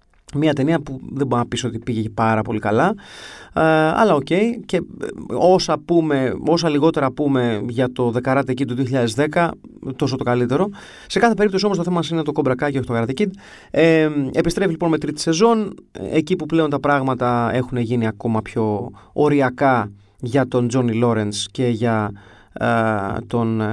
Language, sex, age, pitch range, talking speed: Greek, male, 30-49, 120-175 Hz, 170 wpm